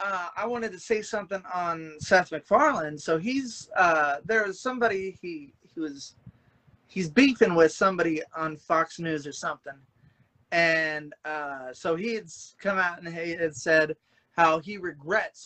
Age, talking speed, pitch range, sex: 30-49, 155 wpm, 150-185 Hz, male